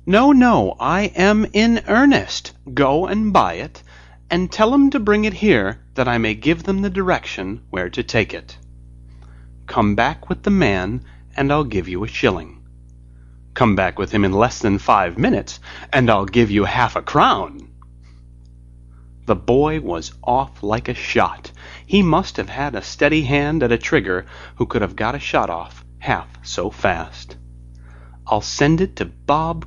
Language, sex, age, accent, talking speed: English, male, 30-49, American, 175 wpm